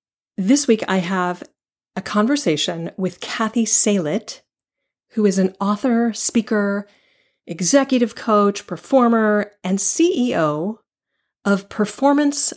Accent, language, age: American, English, 40-59